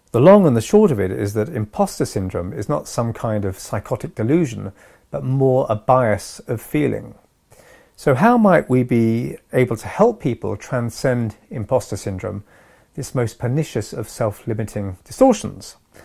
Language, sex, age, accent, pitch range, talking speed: English, male, 40-59, British, 105-150 Hz, 155 wpm